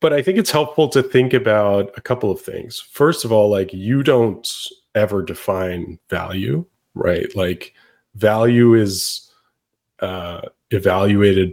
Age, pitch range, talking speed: 30-49, 95-120 Hz, 140 wpm